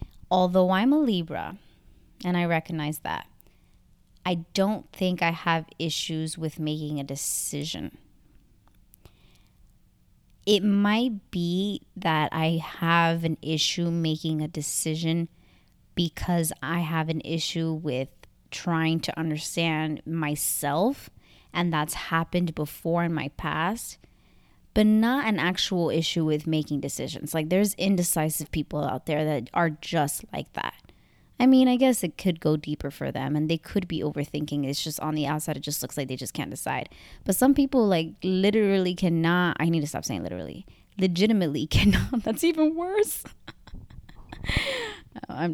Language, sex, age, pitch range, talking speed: English, female, 20-39, 150-185 Hz, 145 wpm